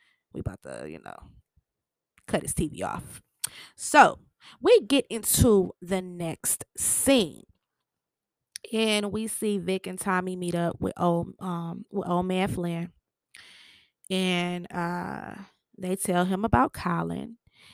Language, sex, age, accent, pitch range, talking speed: English, female, 20-39, American, 175-220 Hz, 130 wpm